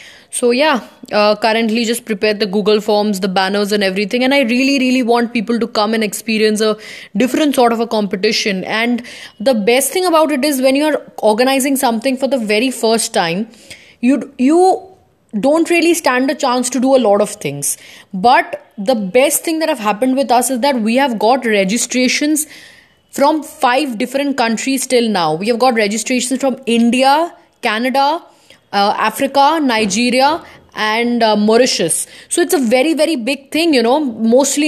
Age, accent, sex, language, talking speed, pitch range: 10-29, Indian, female, English, 175 wpm, 220-270 Hz